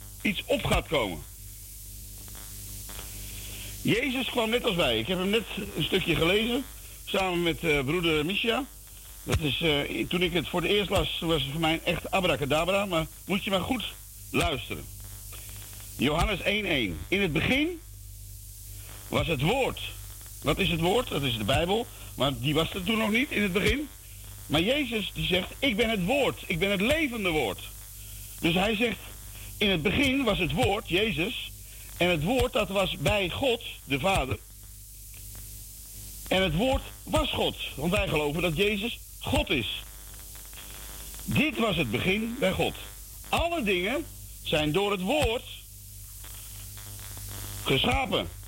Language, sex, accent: Dutch, male, Dutch